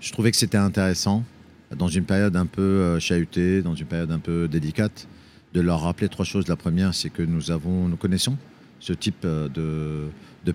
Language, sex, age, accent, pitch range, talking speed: French, male, 50-69, French, 80-95 Hz, 195 wpm